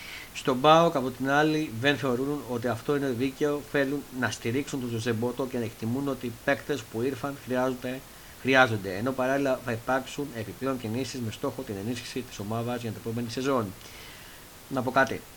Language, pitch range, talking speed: Greek, 115-145 Hz, 180 wpm